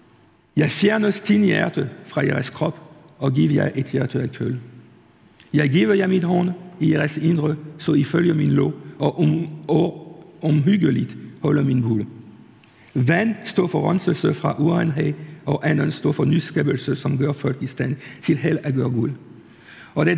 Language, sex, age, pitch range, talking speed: Danish, male, 50-69, 145-180 Hz, 165 wpm